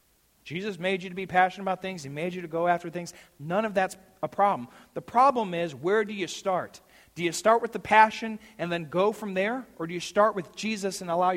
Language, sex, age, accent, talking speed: English, male, 40-59, American, 245 wpm